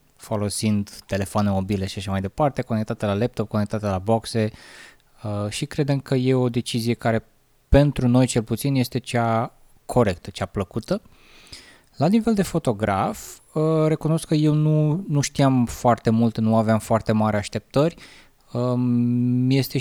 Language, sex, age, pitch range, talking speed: Romanian, male, 20-39, 110-140 Hz, 145 wpm